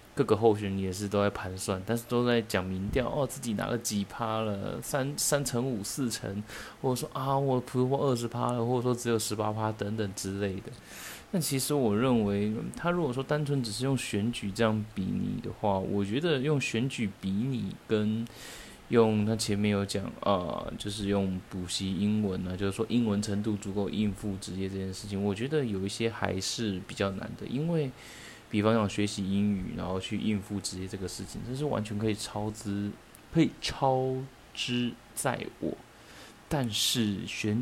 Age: 20-39